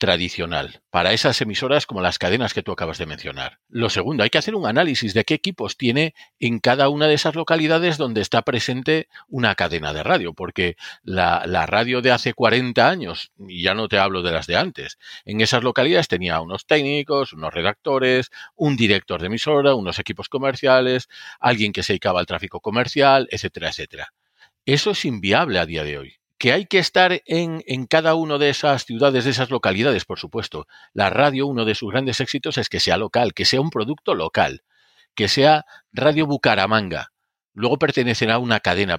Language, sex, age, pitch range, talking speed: Spanish, male, 40-59, 100-155 Hz, 190 wpm